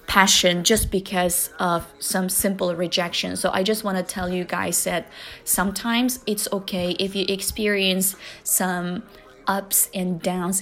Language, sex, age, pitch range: Chinese, female, 20-39, 185-235 Hz